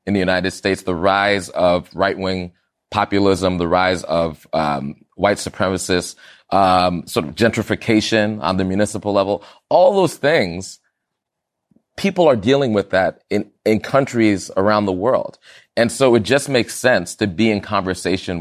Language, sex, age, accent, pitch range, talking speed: English, male, 30-49, American, 90-110 Hz, 155 wpm